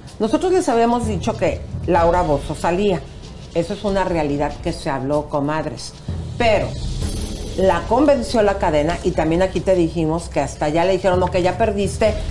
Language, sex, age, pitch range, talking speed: Spanish, female, 50-69, 155-210 Hz, 170 wpm